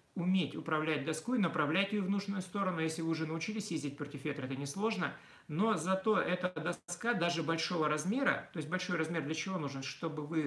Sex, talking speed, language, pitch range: male, 195 wpm, Russian, 155-195 Hz